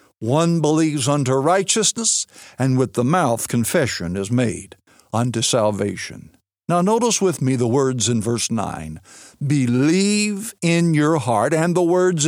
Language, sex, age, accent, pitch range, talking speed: English, male, 60-79, American, 115-175 Hz, 140 wpm